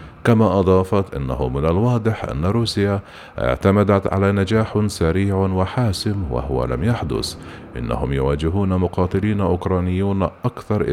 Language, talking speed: Arabic, 110 wpm